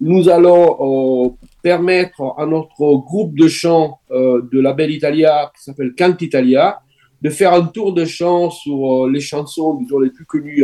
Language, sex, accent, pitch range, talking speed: French, male, French, 140-185 Hz, 175 wpm